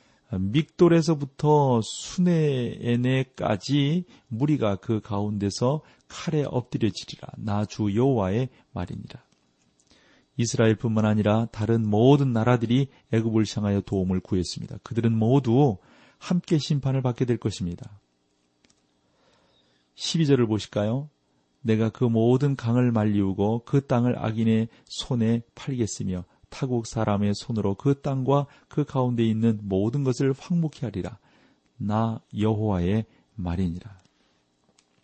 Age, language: 40-59, Korean